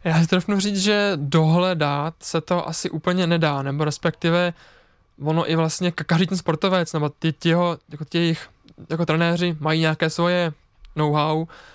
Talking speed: 160 wpm